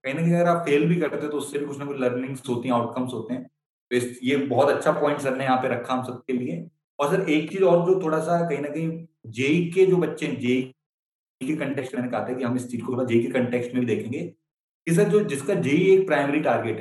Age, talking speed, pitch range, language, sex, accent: 30-49, 225 wpm, 125-160 Hz, Hindi, male, native